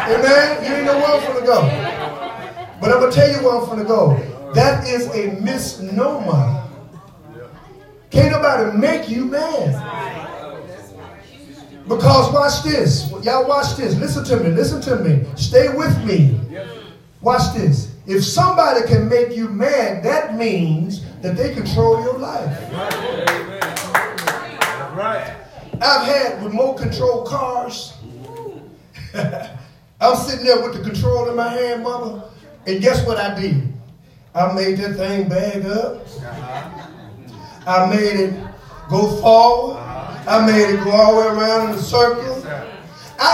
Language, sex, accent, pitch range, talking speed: English, male, American, 150-245 Hz, 140 wpm